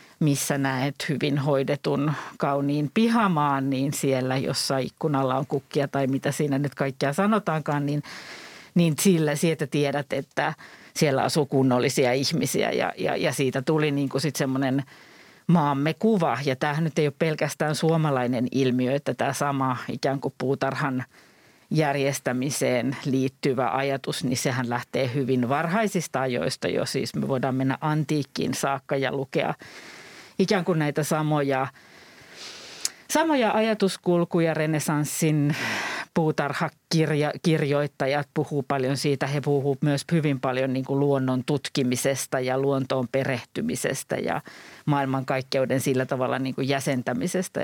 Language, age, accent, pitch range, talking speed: Finnish, 50-69, native, 135-155 Hz, 125 wpm